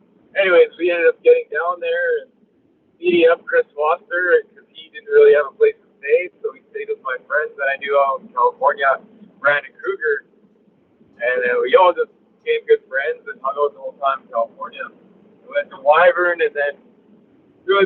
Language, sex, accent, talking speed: English, male, American, 200 wpm